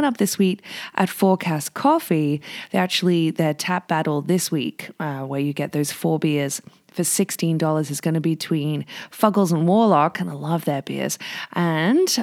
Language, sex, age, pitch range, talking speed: English, female, 20-39, 150-200 Hz, 175 wpm